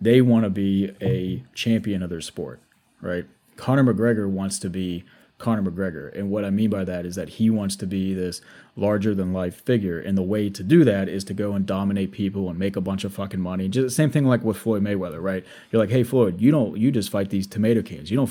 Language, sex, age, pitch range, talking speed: English, male, 30-49, 95-110 Hz, 250 wpm